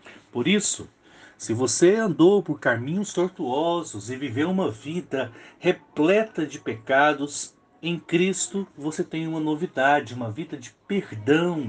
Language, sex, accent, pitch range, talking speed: Portuguese, male, Brazilian, 135-190 Hz, 130 wpm